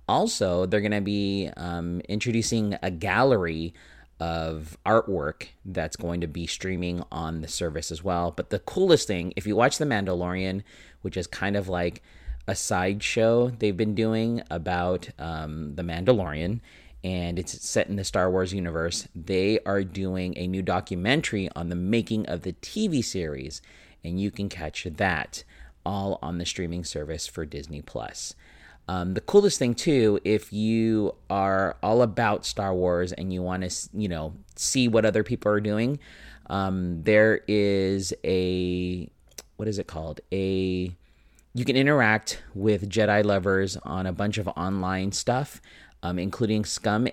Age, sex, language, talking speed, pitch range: 30-49, male, English, 160 wpm, 85-105 Hz